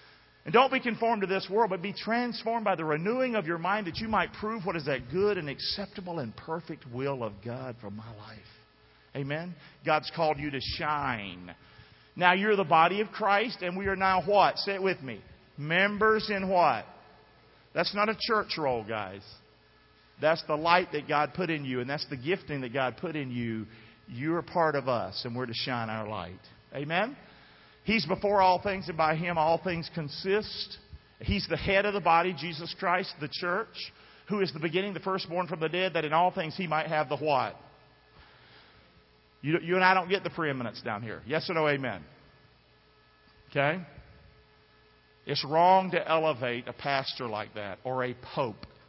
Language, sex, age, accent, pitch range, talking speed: English, male, 40-59, American, 125-190 Hz, 195 wpm